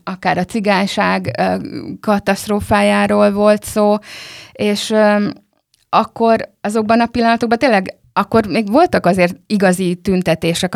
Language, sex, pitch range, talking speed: Hungarian, female, 170-205 Hz, 100 wpm